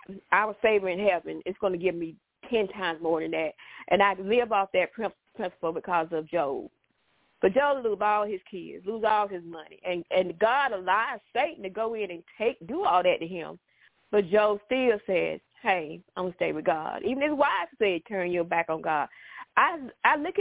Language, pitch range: English, 175-225 Hz